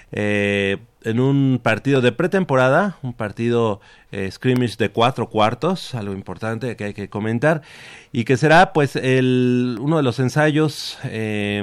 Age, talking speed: 40-59, 150 wpm